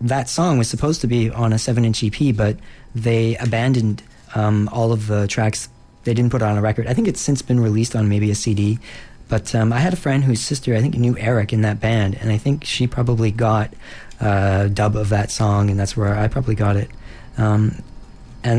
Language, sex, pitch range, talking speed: English, male, 110-125 Hz, 225 wpm